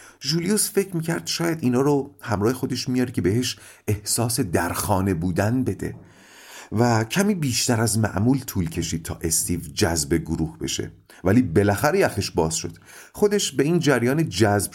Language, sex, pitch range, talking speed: Persian, male, 100-170 Hz, 150 wpm